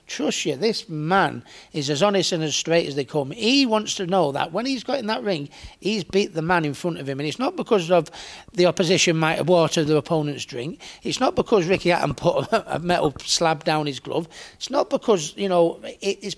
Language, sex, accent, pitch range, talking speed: English, male, British, 155-190 Hz, 230 wpm